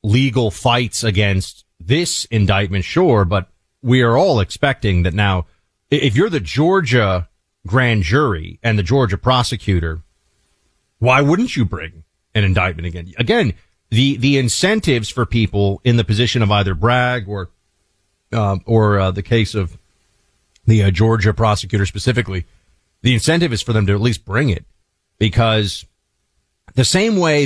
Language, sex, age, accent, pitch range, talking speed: English, male, 40-59, American, 100-130 Hz, 150 wpm